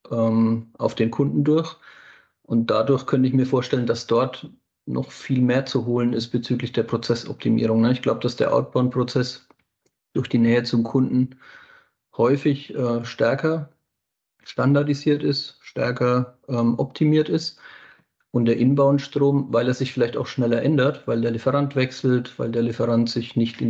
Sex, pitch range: male, 115-130 Hz